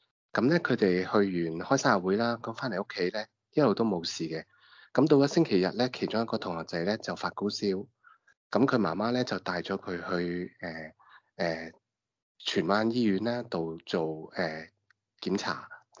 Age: 20-39